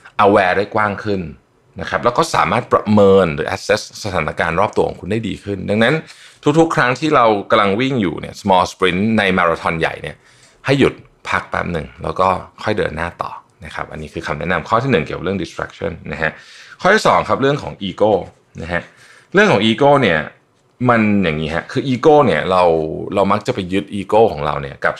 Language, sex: Thai, male